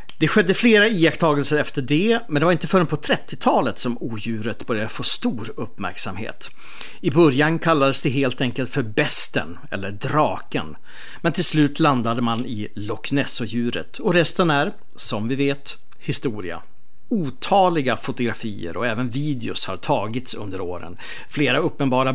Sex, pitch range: male, 115-150 Hz